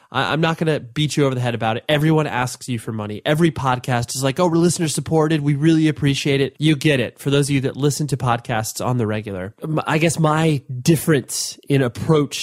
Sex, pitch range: male, 120-155 Hz